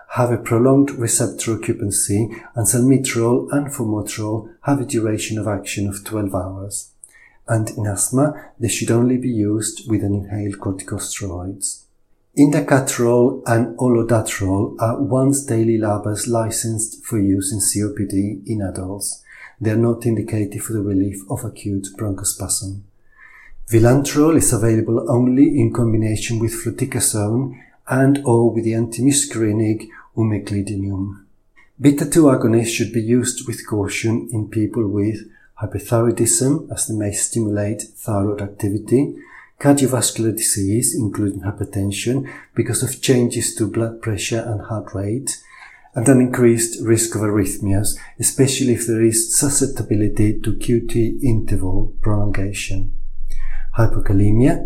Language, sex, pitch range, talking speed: English, male, 100-120 Hz, 125 wpm